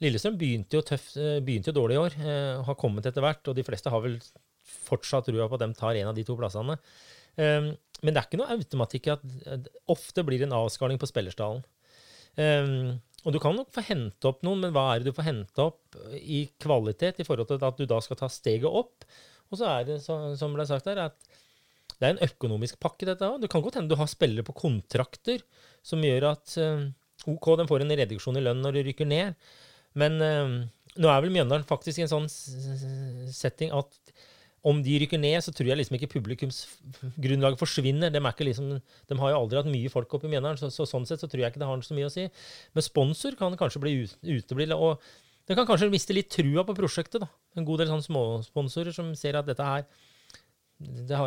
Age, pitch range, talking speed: 30-49, 130-160 Hz, 225 wpm